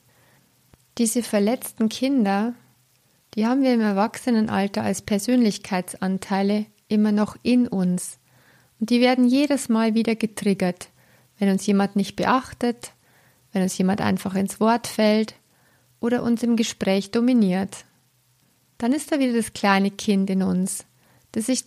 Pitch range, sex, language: 185-230 Hz, female, German